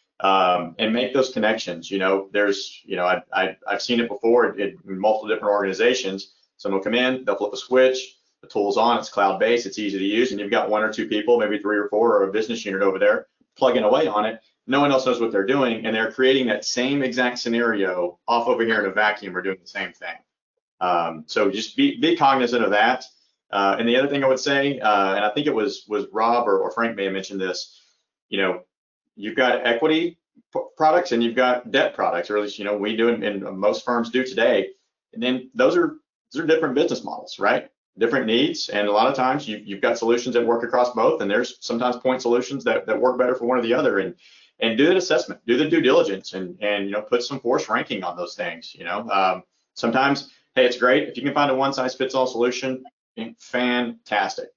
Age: 40-59